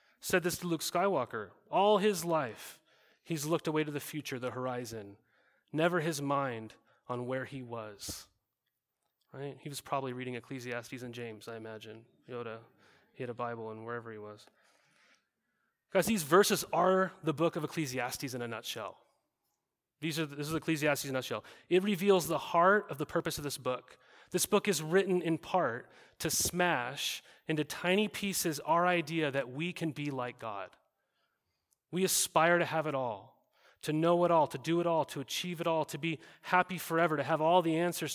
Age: 30-49